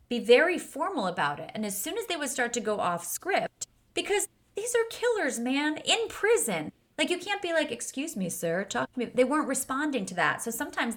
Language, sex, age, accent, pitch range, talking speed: English, female, 30-49, American, 210-280 Hz, 225 wpm